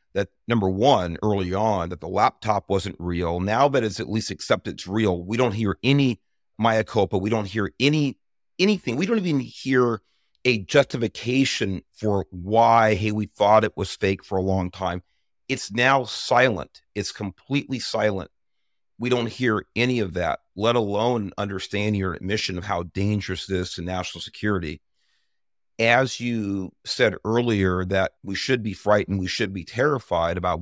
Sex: male